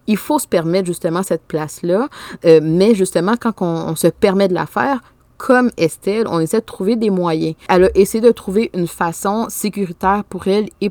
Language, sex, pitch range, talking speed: French, female, 170-220 Hz, 205 wpm